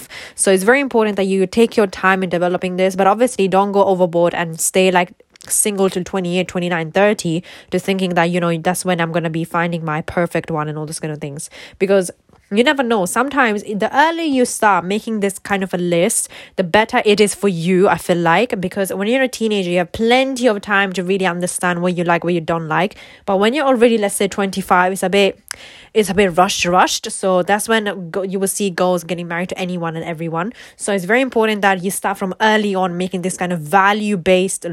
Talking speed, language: 230 wpm, English